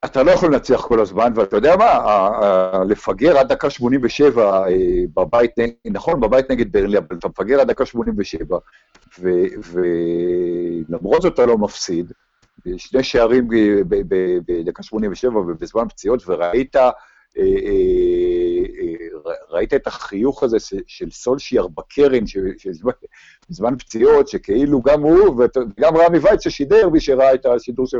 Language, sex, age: Hebrew, male, 60-79